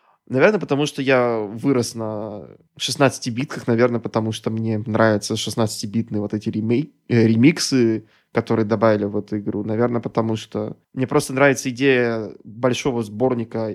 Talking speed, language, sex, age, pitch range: 135 wpm, Russian, male, 20-39, 115-145 Hz